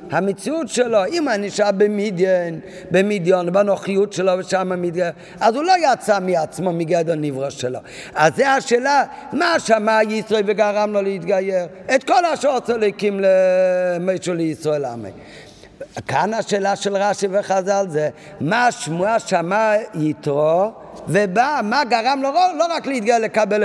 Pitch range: 165-230 Hz